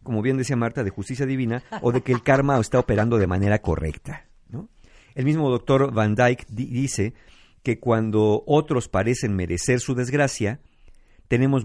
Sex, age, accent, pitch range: male, 50-69, Mexican, 95-130 Hz